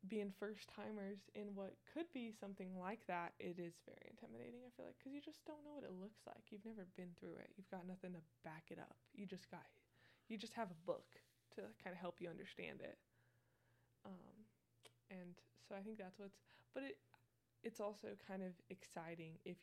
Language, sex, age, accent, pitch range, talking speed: English, female, 20-39, American, 155-205 Hz, 210 wpm